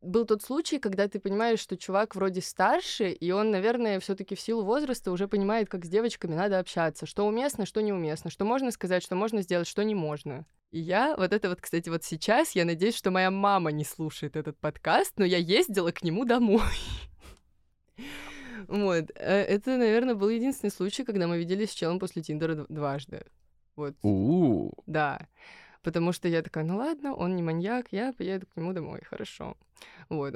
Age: 20-39